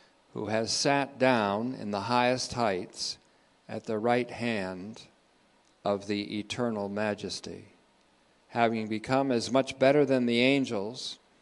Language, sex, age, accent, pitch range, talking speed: English, male, 50-69, American, 105-130 Hz, 125 wpm